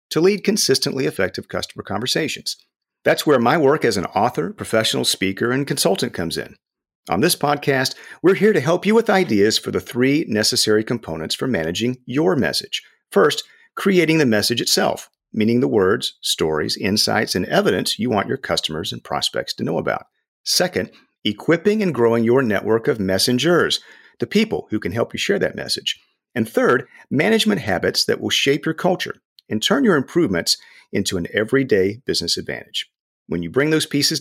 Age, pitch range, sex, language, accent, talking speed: 50-69, 110-180 Hz, male, English, American, 175 wpm